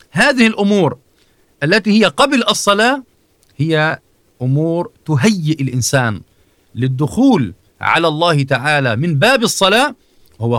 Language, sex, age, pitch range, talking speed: Arabic, male, 40-59, 115-170 Hz, 100 wpm